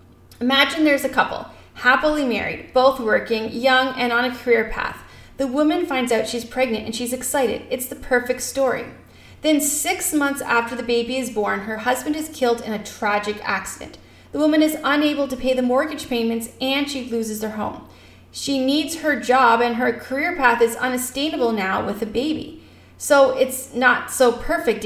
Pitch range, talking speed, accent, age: 230-280 Hz, 185 wpm, American, 30-49